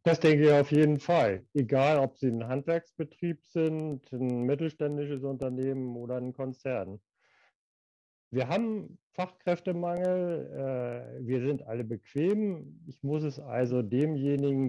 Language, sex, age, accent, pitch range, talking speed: German, male, 40-59, German, 115-145 Hz, 125 wpm